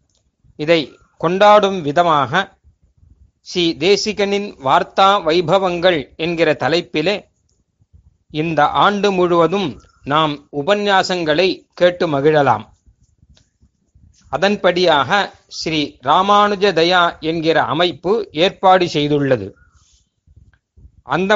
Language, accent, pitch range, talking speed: Tamil, native, 120-200 Hz, 70 wpm